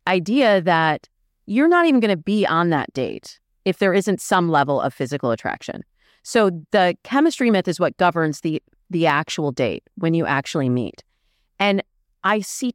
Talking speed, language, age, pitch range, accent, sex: 175 wpm, English, 30-49, 155-205 Hz, American, female